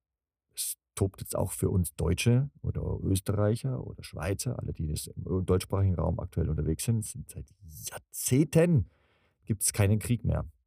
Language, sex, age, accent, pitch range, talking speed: German, male, 40-59, German, 85-110 Hz, 150 wpm